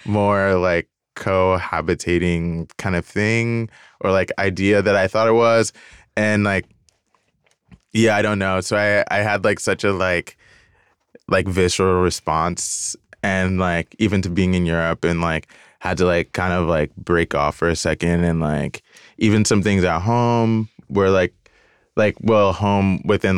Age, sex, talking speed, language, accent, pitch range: 20-39, male, 165 wpm, English, American, 85-100 Hz